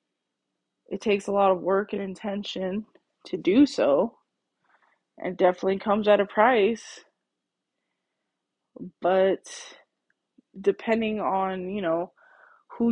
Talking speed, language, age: 105 wpm, English, 20-39